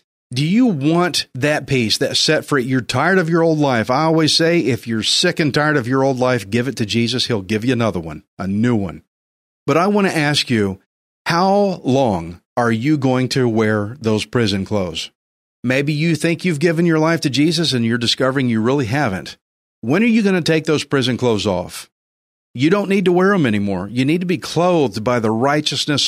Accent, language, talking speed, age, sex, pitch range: American, English, 215 wpm, 50-69, male, 110-160 Hz